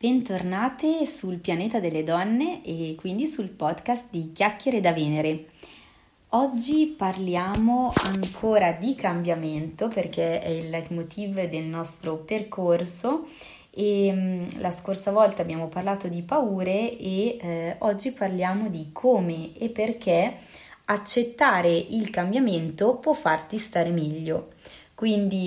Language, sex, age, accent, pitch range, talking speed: Italian, female, 20-39, native, 165-210 Hz, 115 wpm